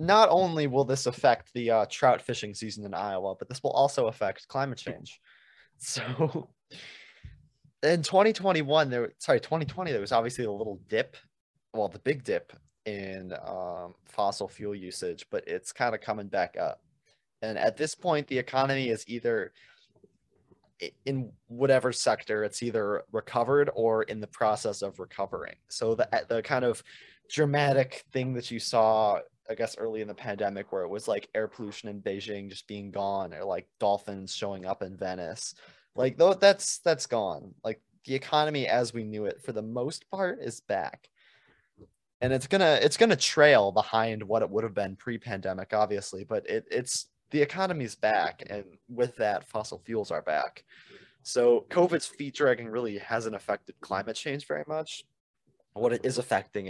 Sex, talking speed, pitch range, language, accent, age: male, 175 wpm, 105-150 Hz, English, American, 20-39